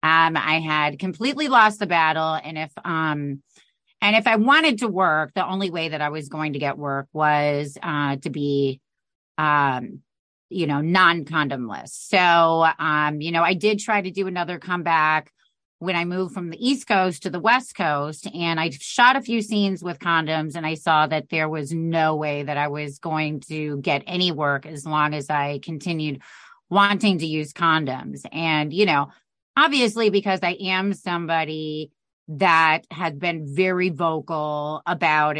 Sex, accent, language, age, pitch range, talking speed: female, American, English, 30-49, 150-190 Hz, 175 wpm